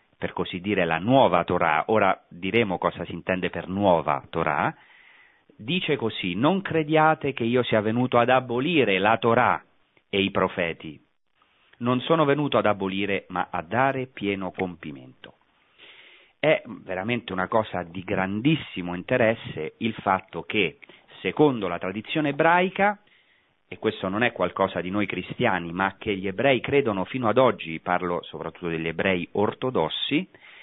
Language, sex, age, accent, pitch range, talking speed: Italian, male, 40-59, native, 95-155 Hz, 145 wpm